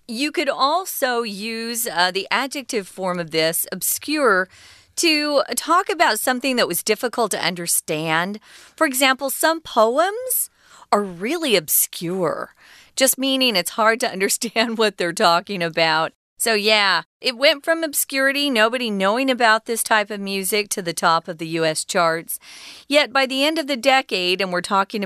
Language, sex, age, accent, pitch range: Chinese, female, 40-59, American, 175-260 Hz